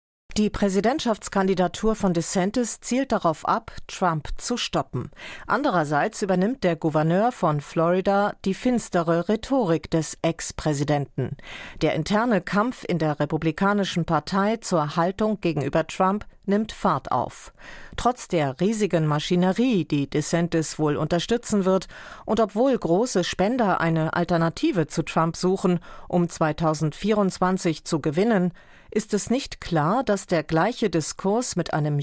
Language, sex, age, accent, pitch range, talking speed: German, female, 40-59, German, 165-205 Hz, 125 wpm